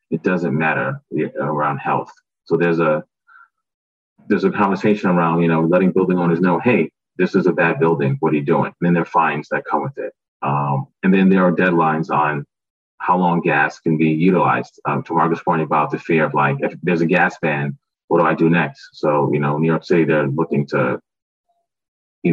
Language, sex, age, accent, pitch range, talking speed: English, male, 30-49, American, 75-90 Hz, 210 wpm